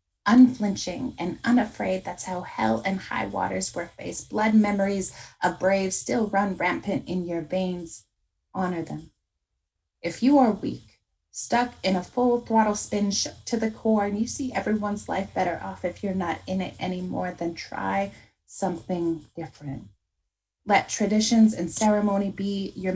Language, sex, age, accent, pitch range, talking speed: English, female, 20-39, American, 170-205 Hz, 155 wpm